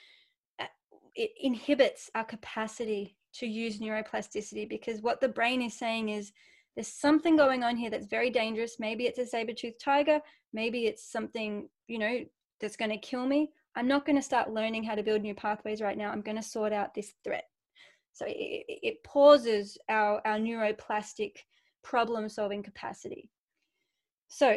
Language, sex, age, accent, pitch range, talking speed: English, female, 20-39, Australian, 220-270 Hz, 170 wpm